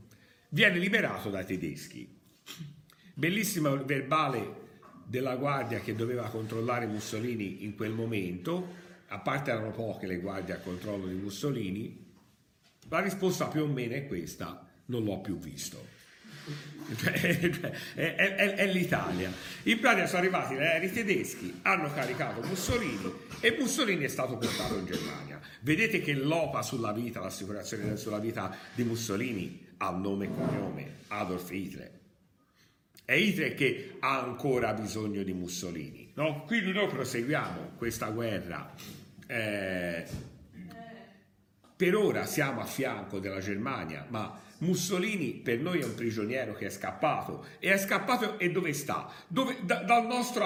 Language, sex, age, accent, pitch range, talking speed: Italian, male, 50-69, native, 105-170 Hz, 140 wpm